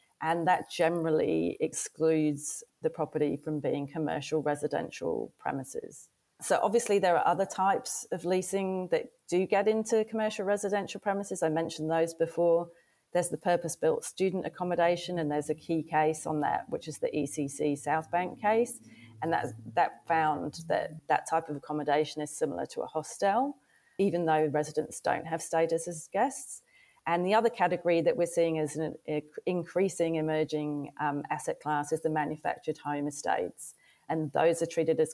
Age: 40-59